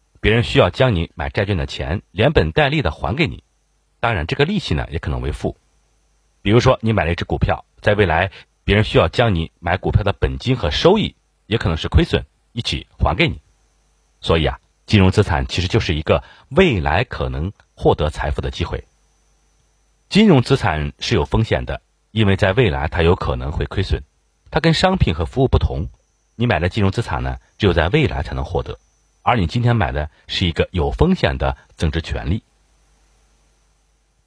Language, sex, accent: Chinese, male, native